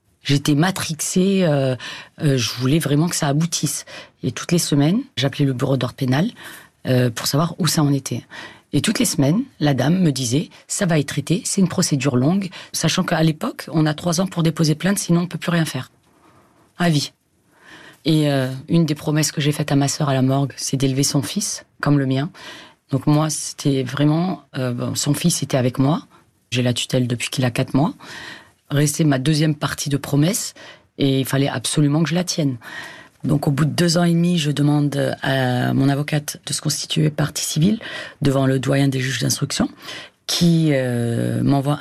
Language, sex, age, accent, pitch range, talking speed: French, female, 30-49, French, 135-165 Hz, 205 wpm